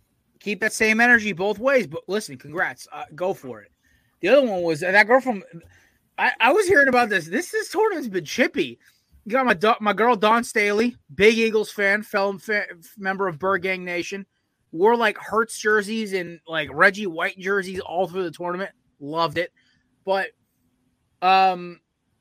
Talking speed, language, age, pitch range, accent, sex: 180 wpm, English, 20-39, 150-200 Hz, American, male